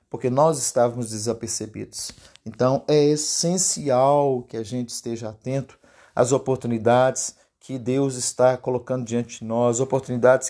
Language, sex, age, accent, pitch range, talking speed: Portuguese, male, 50-69, Brazilian, 120-155 Hz, 125 wpm